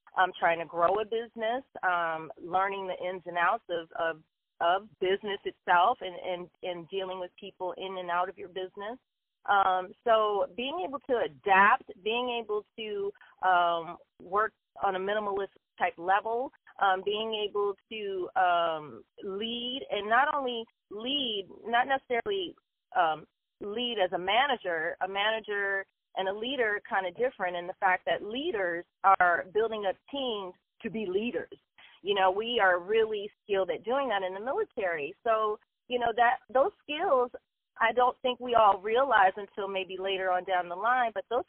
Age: 30-49